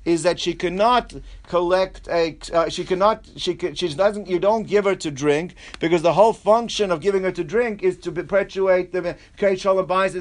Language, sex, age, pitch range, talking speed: English, male, 50-69, 175-210 Hz, 210 wpm